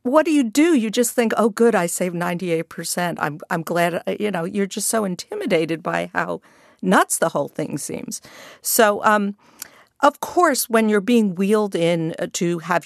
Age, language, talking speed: 50-69, English, 185 wpm